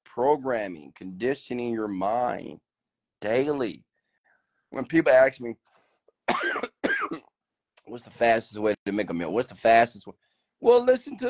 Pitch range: 115-160 Hz